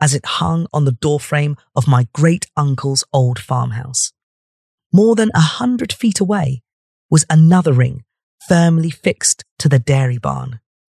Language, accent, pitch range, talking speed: English, British, 130-165 Hz, 145 wpm